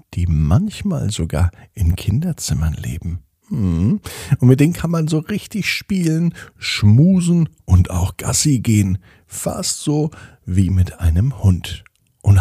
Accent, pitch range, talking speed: German, 90-125 Hz, 130 wpm